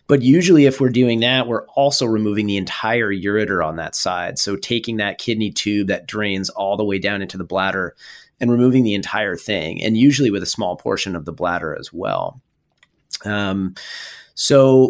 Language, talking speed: English, 190 wpm